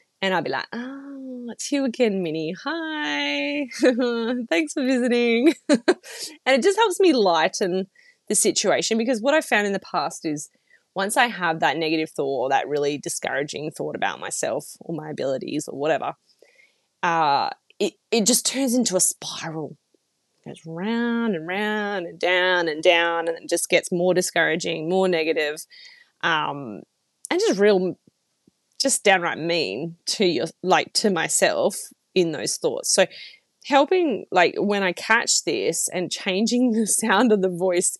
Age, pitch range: 20-39, 170-270 Hz